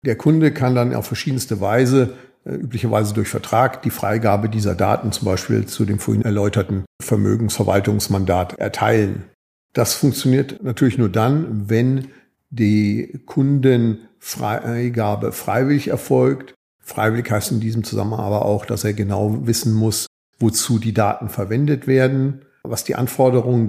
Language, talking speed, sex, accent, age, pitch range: German, 130 wpm, male, German, 50-69, 105-120 Hz